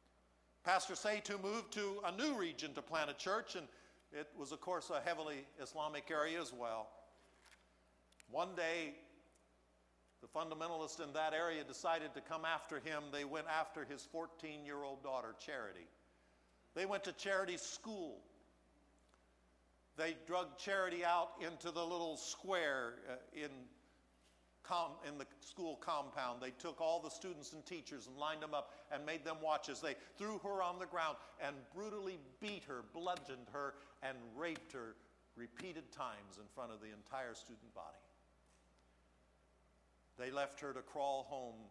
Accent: American